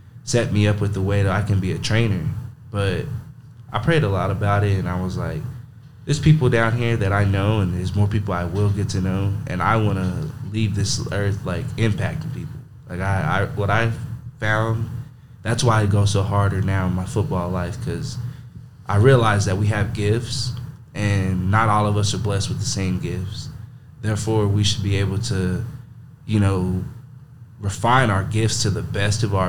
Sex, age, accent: male, 20-39, American